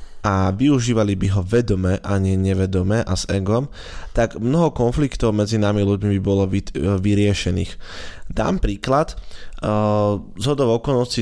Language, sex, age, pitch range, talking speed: Slovak, male, 20-39, 100-125 Hz, 140 wpm